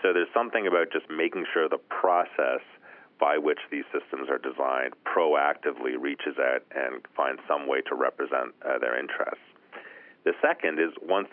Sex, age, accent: male, 40-59, American